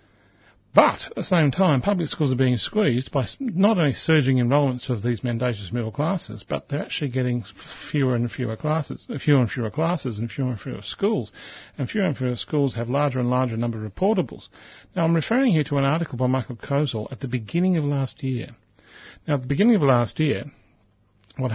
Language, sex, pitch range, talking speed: English, male, 115-145 Hz, 205 wpm